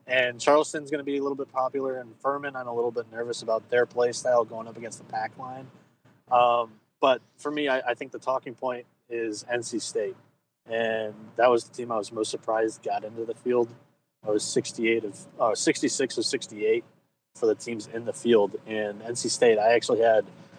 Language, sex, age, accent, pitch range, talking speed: English, male, 20-39, American, 115-135 Hz, 210 wpm